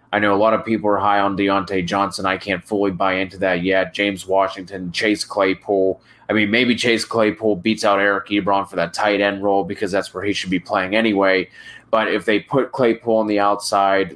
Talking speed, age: 220 wpm, 20-39